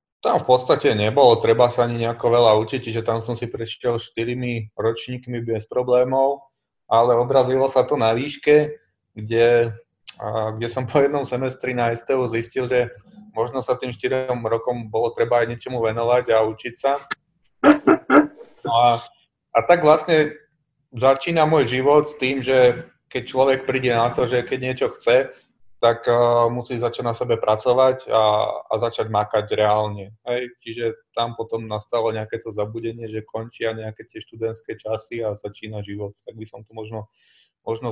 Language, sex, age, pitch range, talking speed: Slovak, male, 30-49, 115-130 Hz, 160 wpm